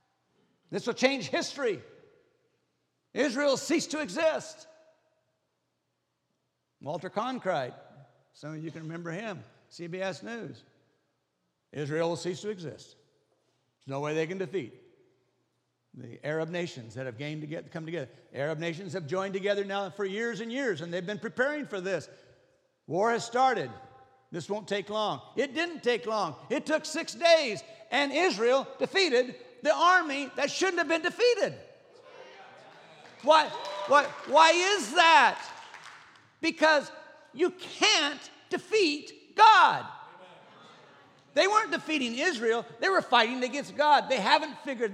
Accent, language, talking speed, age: American, English, 135 wpm, 60-79